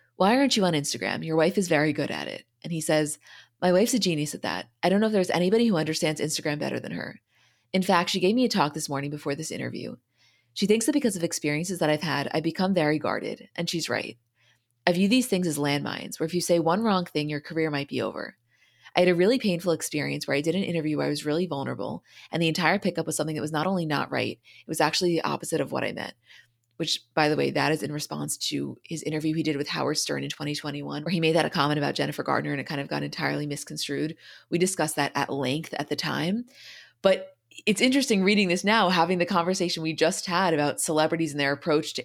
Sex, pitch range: female, 150-190 Hz